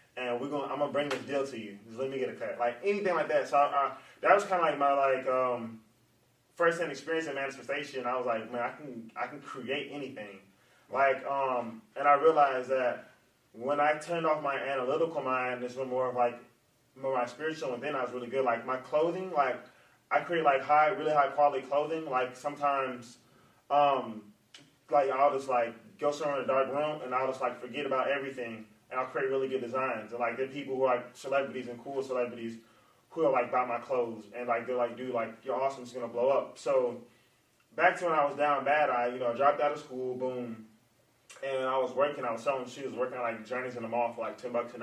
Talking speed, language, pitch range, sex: 235 wpm, English, 120-145 Hz, male